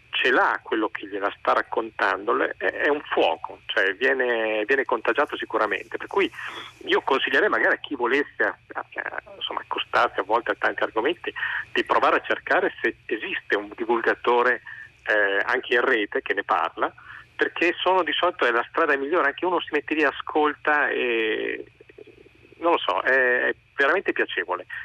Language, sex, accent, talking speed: Italian, male, native, 165 wpm